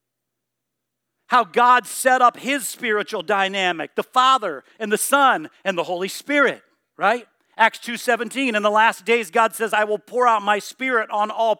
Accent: American